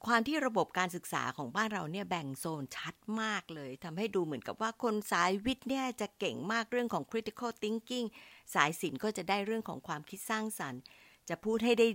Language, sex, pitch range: Thai, female, 160-220 Hz